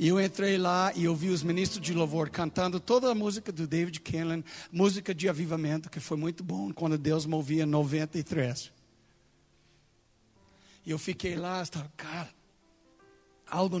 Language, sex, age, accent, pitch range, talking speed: Portuguese, male, 60-79, Brazilian, 140-180 Hz, 155 wpm